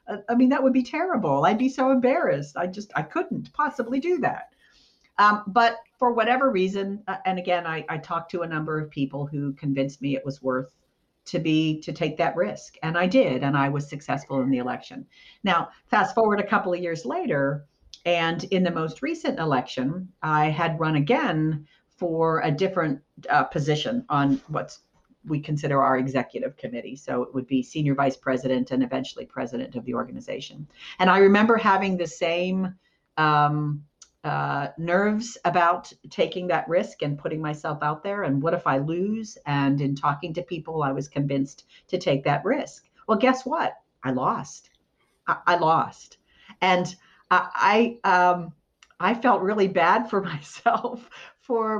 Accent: American